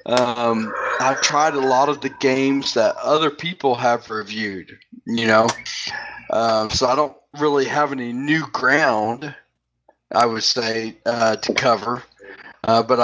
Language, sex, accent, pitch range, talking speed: English, male, American, 115-140 Hz, 150 wpm